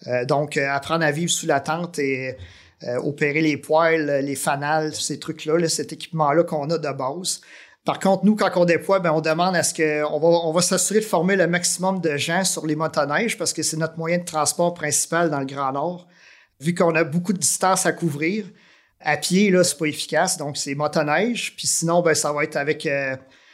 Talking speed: 220 wpm